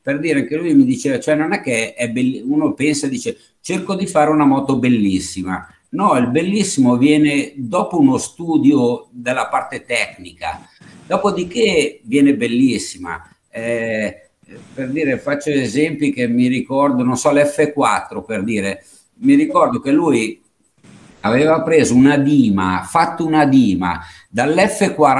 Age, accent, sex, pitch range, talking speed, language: 60-79, native, male, 125-170 Hz, 145 wpm, Italian